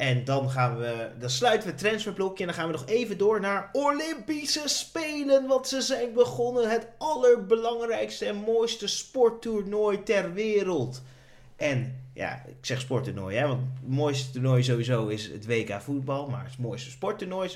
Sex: male